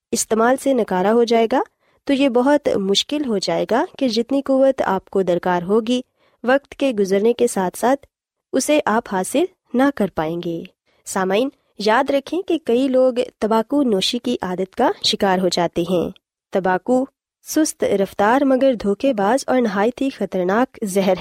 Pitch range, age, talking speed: 190-270 Hz, 20-39, 165 wpm